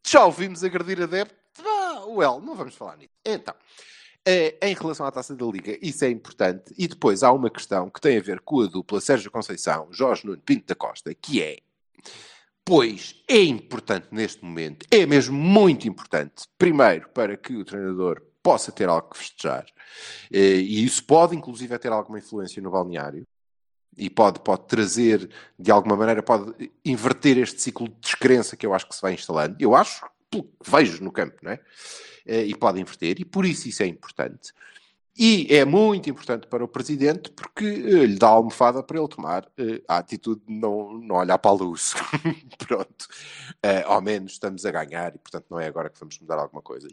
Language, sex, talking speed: Portuguese, male, 190 wpm